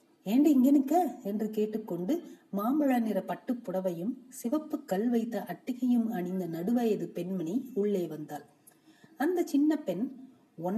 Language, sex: Tamil, female